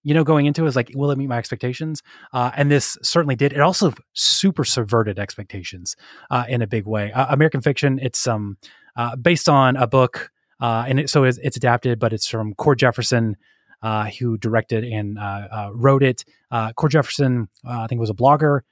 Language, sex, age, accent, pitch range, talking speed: English, male, 20-39, American, 110-135 Hz, 210 wpm